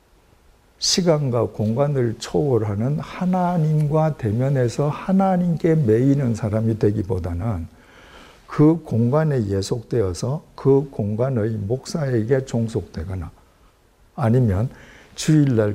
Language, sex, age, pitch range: Korean, male, 60-79, 105-145 Hz